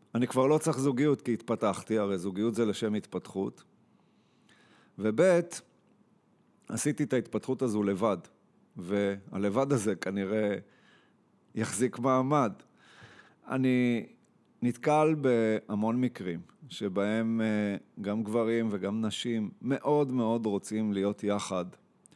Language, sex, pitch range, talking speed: Hebrew, male, 110-140 Hz, 100 wpm